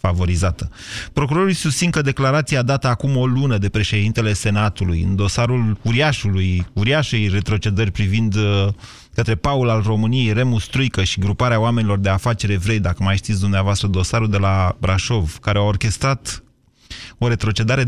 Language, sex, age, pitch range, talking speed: Romanian, male, 30-49, 105-130 Hz, 150 wpm